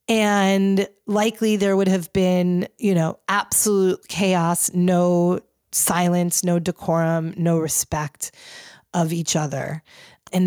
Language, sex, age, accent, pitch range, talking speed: English, female, 30-49, American, 165-195 Hz, 115 wpm